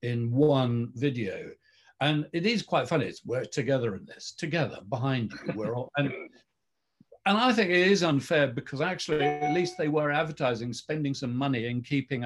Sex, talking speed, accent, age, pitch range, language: male, 180 wpm, British, 50-69, 120-155 Hz, English